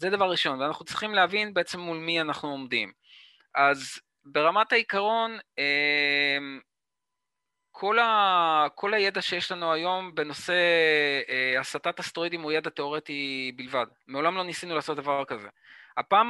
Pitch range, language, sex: 130-170 Hz, Hebrew, male